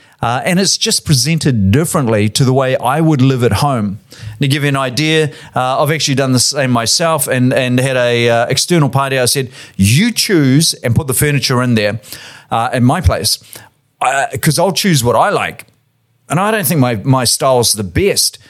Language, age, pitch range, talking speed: English, 40-59, 125-165 Hz, 210 wpm